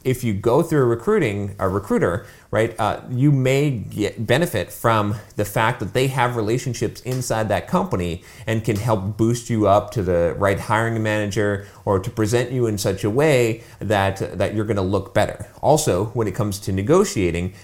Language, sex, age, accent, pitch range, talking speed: English, male, 30-49, American, 95-120 Hz, 190 wpm